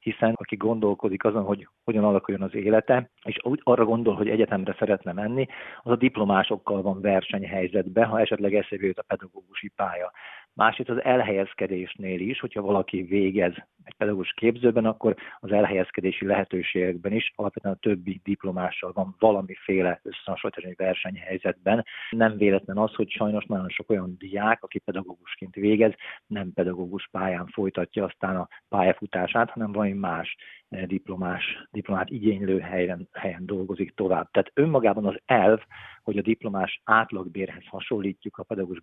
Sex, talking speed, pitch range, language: male, 145 wpm, 95-110 Hz, Hungarian